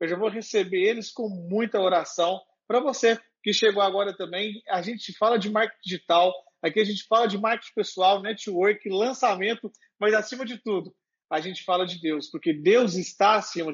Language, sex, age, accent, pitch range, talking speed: Portuguese, male, 40-59, Brazilian, 190-235 Hz, 185 wpm